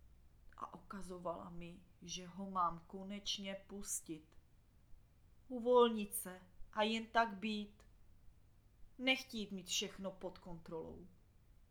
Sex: female